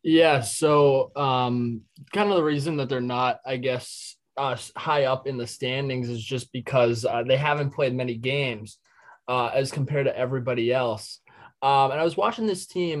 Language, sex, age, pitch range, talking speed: English, male, 20-39, 125-150 Hz, 185 wpm